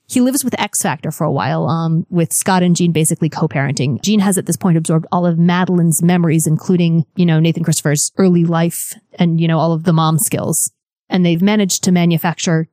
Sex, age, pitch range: female, 20-39, 160-200 Hz